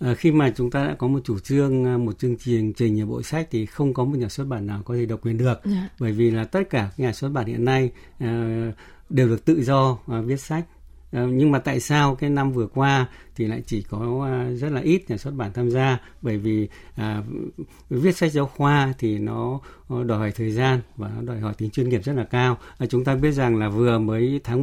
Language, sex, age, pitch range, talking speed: Vietnamese, male, 60-79, 115-135 Hz, 230 wpm